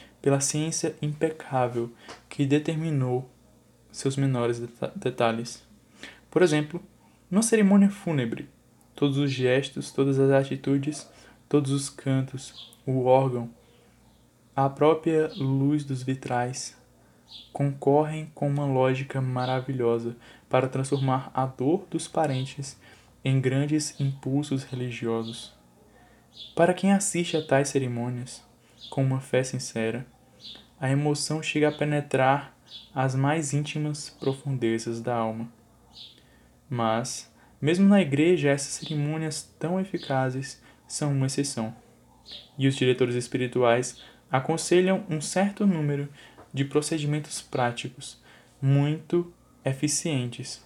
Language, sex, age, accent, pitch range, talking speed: Portuguese, male, 10-29, Brazilian, 125-150 Hz, 105 wpm